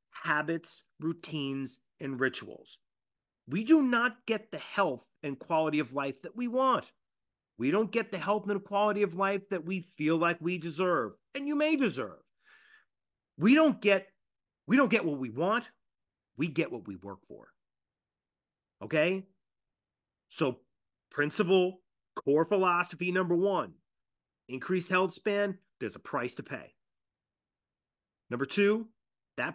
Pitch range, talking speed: 130-185 Hz, 140 wpm